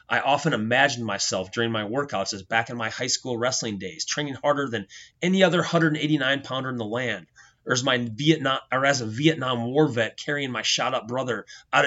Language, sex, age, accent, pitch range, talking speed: English, male, 30-49, American, 115-150 Hz, 180 wpm